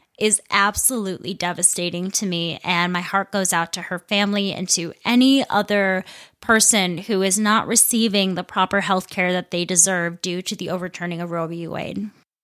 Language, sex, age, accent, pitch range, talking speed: English, female, 20-39, American, 185-235 Hz, 180 wpm